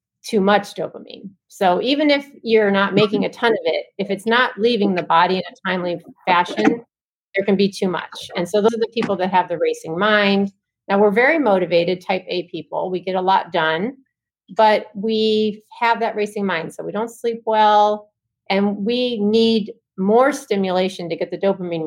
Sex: female